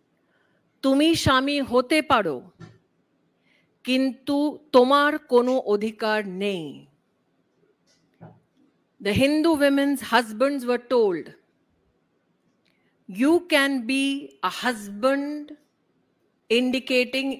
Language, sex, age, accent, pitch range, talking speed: Hindi, female, 50-69, native, 225-285 Hz, 60 wpm